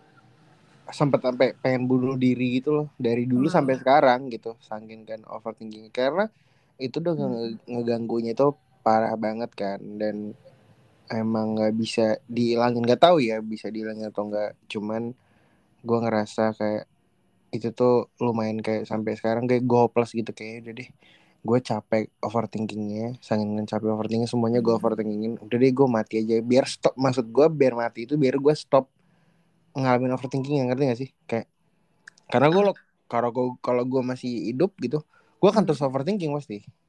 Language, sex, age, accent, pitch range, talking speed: Indonesian, male, 20-39, native, 110-135 Hz, 160 wpm